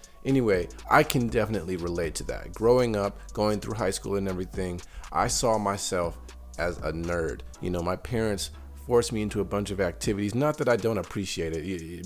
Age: 30-49